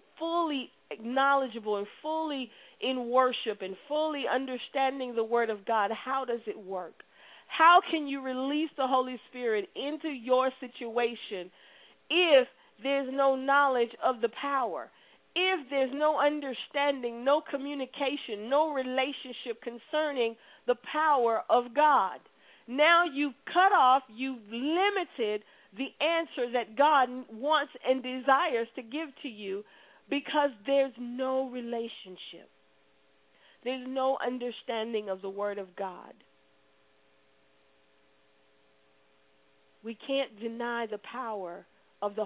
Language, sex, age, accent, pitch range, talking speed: English, female, 40-59, American, 220-275 Hz, 120 wpm